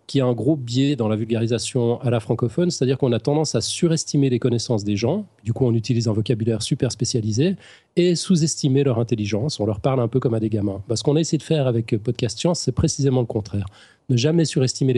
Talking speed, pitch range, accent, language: 230 wpm, 115-135 Hz, French, French